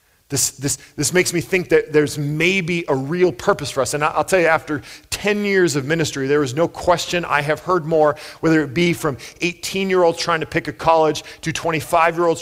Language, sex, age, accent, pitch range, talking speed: English, male, 40-59, American, 110-165 Hz, 210 wpm